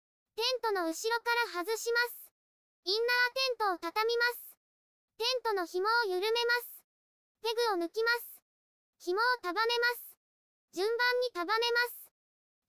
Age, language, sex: 20-39, Japanese, male